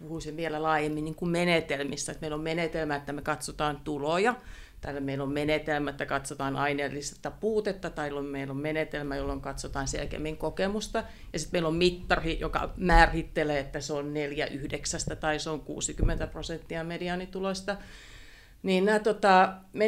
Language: Finnish